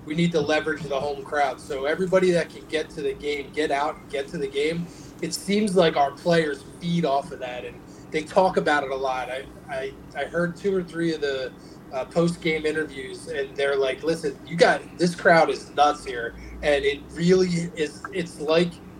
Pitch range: 145-170 Hz